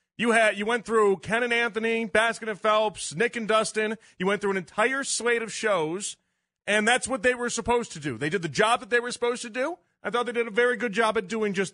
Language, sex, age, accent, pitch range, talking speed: English, male, 40-59, American, 185-235 Hz, 260 wpm